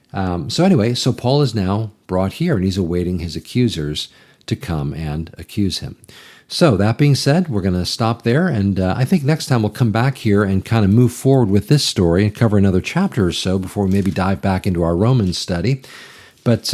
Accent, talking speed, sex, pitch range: American, 220 wpm, male, 90-120 Hz